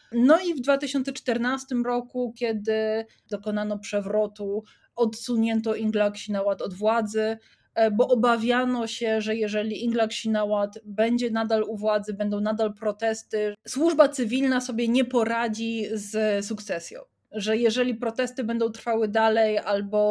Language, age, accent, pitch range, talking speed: Polish, 20-39, native, 210-255 Hz, 115 wpm